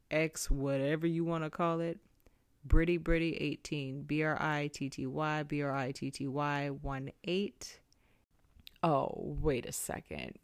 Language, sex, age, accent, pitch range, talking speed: English, female, 30-49, American, 145-230 Hz, 90 wpm